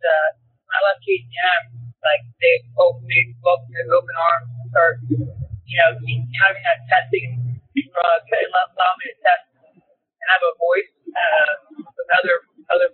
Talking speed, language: 135 wpm, English